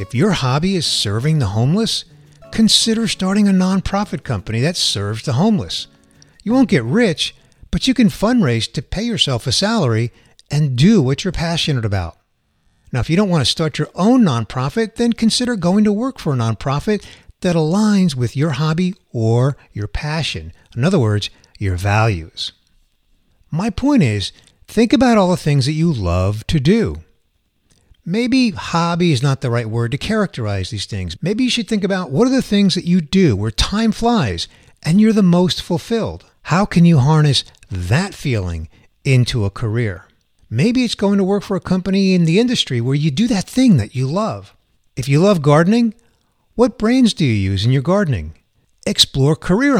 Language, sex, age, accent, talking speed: English, male, 50-69, American, 185 wpm